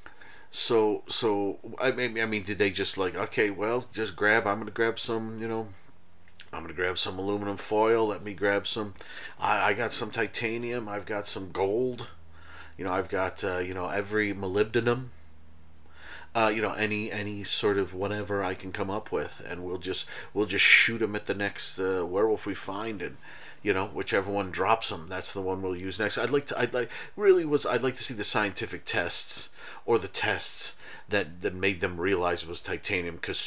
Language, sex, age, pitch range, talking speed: English, male, 30-49, 90-125 Hz, 210 wpm